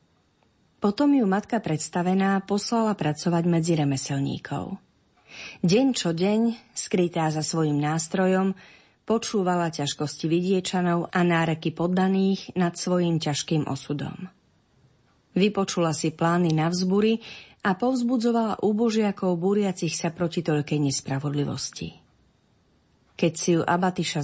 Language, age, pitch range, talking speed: Slovak, 30-49, 155-200 Hz, 105 wpm